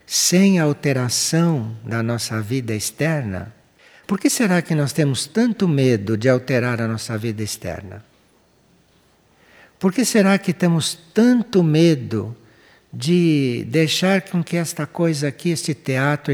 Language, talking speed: Portuguese, 130 wpm